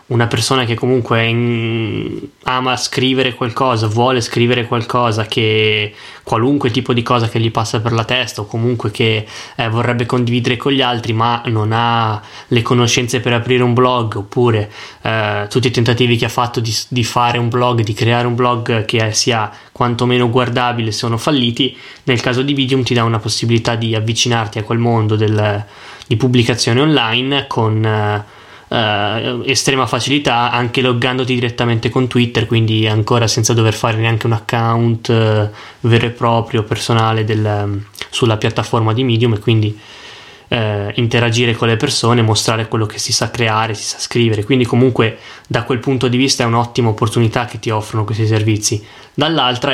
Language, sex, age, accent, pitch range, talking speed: Italian, male, 20-39, native, 110-125 Hz, 165 wpm